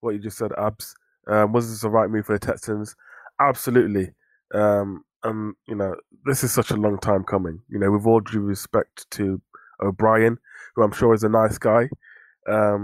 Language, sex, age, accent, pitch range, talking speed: English, male, 20-39, British, 115-170 Hz, 190 wpm